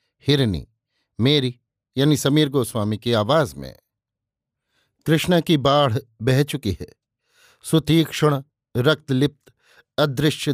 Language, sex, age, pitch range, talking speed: Hindi, male, 50-69, 125-150 Hz, 95 wpm